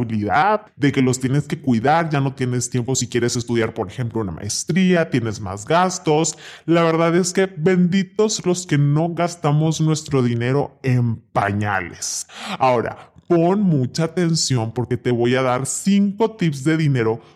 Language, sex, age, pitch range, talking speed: Spanish, female, 20-39, 125-175 Hz, 160 wpm